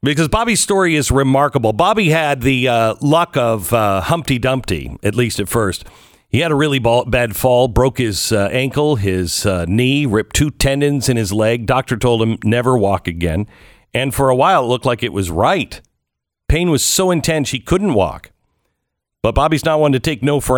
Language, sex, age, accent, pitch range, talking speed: English, male, 50-69, American, 105-145 Hz, 200 wpm